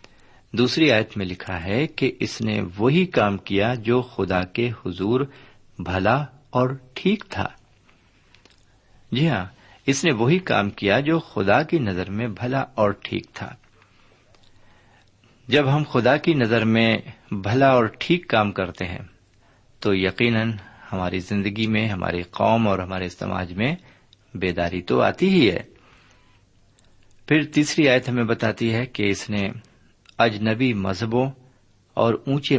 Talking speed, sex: 140 wpm, male